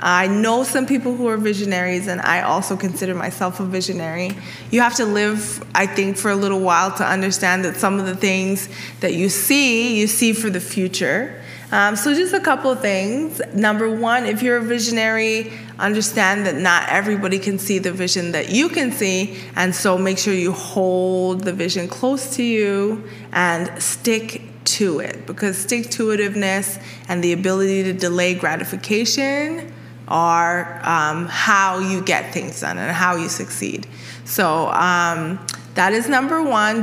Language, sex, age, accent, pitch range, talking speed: English, female, 20-39, American, 180-220 Hz, 170 wpm